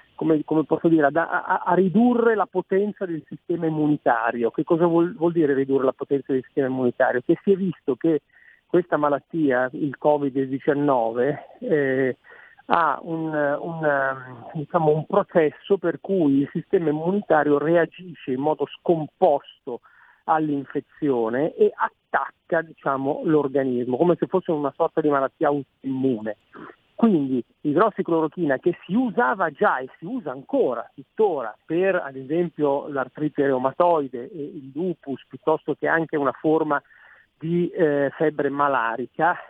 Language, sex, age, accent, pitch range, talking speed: Italian, male, 50-69, native, 140-175 Hz, 130 wpm